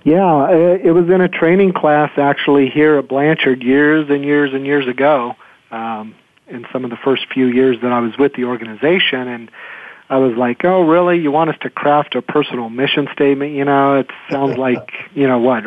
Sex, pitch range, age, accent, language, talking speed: male, 130-165 Hz, 50-69, American, English, 205 wpm